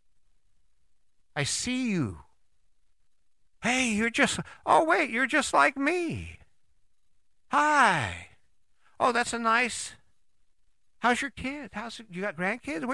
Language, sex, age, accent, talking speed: English, male, 50-69, American, 115 wpm